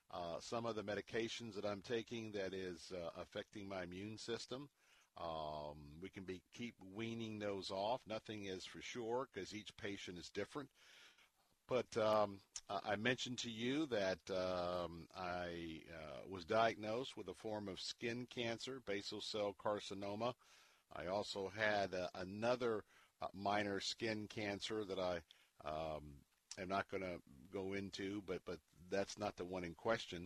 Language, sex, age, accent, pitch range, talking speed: English, male, 50-69, American, 90-110 Hz, 155 wpm